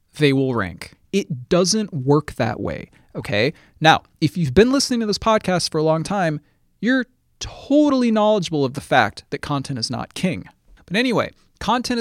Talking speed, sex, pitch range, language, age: 175 wpm, male, 140-230 Hz, English, 20-39